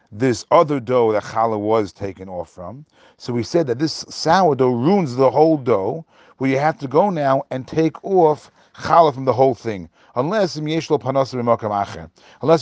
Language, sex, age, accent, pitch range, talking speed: English, male, 40-59, American, 115-150 Hz, 165 wpm